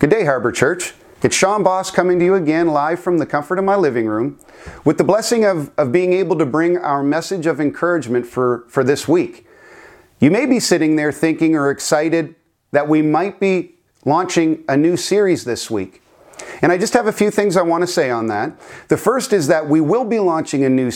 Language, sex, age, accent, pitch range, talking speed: English, male, 40-59, American, 145-185 Hz, 220 wpm